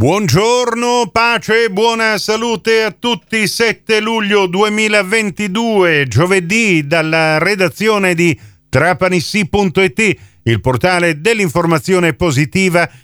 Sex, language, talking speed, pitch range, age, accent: male, Italian, 85 wpm, 160-215 Hz, 40-59, native